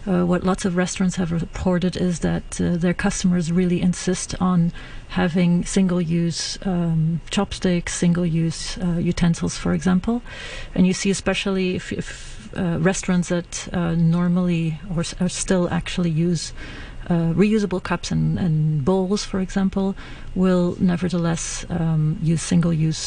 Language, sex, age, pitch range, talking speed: English, female, 40-59, 170-185 Hz, 140 wpm